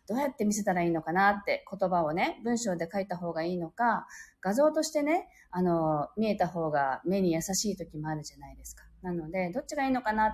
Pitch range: 170-270 Hz